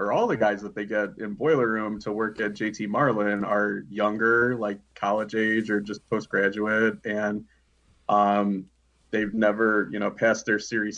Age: 30-49